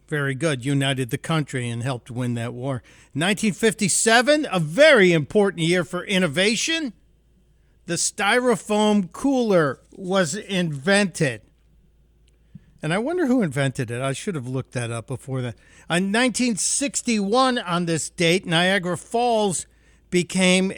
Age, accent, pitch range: 50-69, American, 140-200 Hz